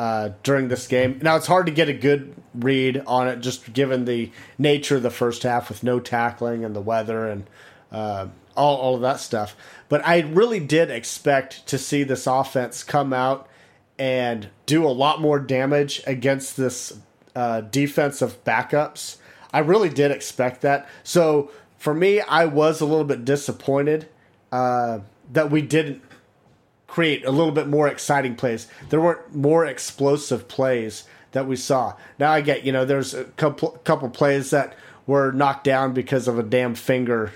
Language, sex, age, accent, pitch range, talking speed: English, male, 30-49, American, 125-150 Hz, 175 wpm